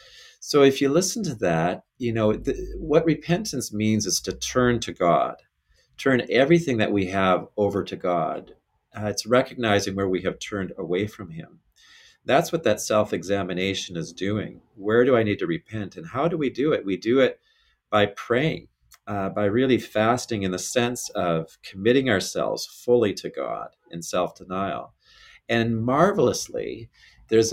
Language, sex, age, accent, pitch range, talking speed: English, male, 40-59, American, 100-140 Hz, 165 wpm